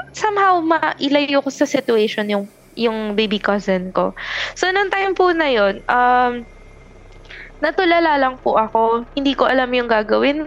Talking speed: 150 wpm